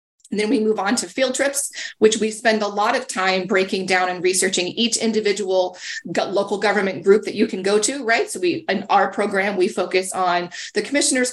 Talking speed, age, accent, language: 215 wpm, 30-49, American, English